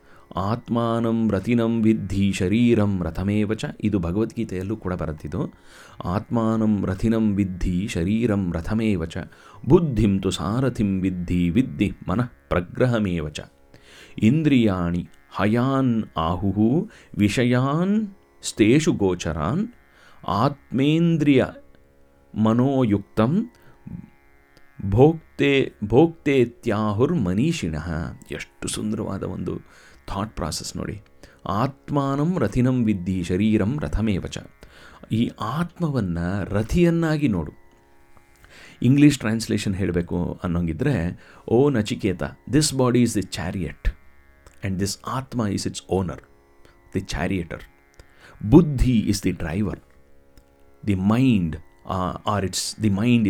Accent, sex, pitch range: native, male, 85-115 Hz